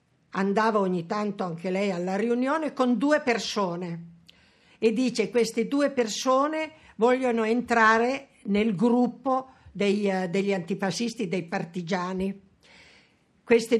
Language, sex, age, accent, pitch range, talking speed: Italian, female, 50-69, native, 195-245 Hz, 105 wpm